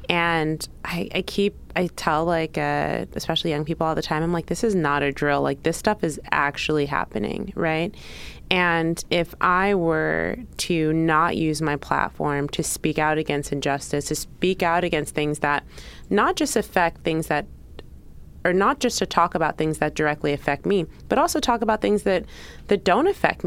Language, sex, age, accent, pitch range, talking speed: English, female, 20-39, American, 150-185 Hz, 185 wpm